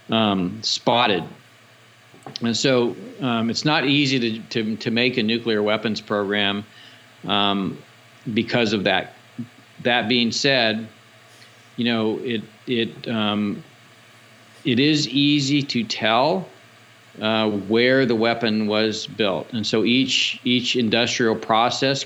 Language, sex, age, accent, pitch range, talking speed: English, male, 50-69, American, 105-125 Hz, 120 wpm